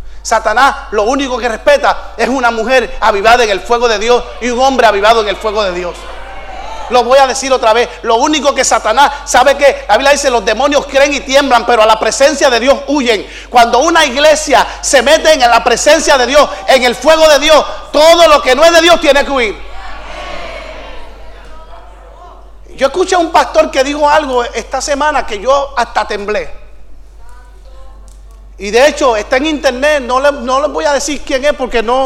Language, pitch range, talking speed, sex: English, 240-295 Hz, 200 wpm, male